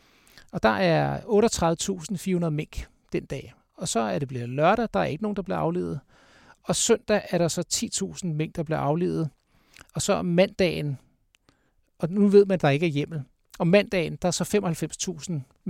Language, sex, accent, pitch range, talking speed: Danish, male, native, 150-195 Hz, 180 wpm